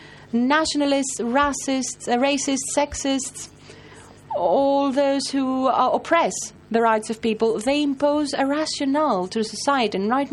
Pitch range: 195-265 Hz